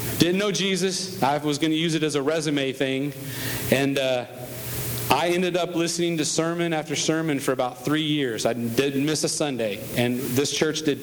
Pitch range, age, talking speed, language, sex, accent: 125-155 Hz, 40-59, 195 wpm, English, male, American